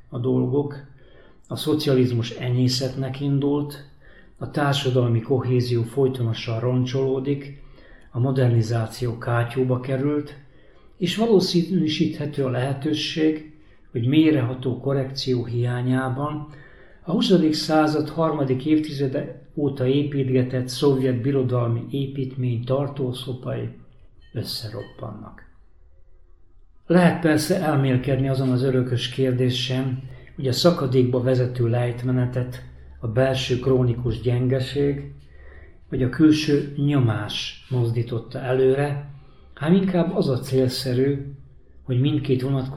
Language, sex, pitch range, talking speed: Hungarian, male, 120-145 Hz, 90 wpm